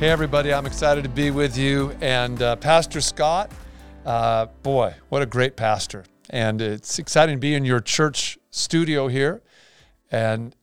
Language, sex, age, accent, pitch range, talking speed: English, male, 50-69, American, 110-140 Hz, 165 wpm